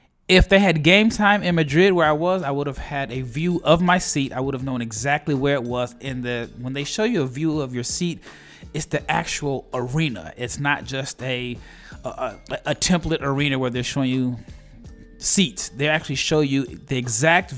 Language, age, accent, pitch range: English, 30-49, American, 135-165 Hz